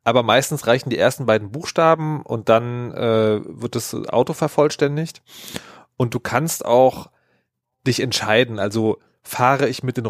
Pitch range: 120-150 Hz